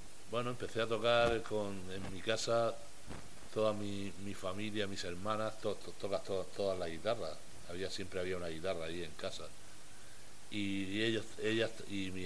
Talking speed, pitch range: 175 wpm, 90-105 Hz